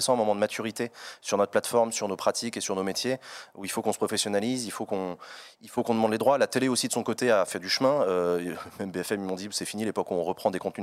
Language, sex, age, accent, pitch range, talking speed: French, male, 30-49, French, 95-120 Hz, 300 wpm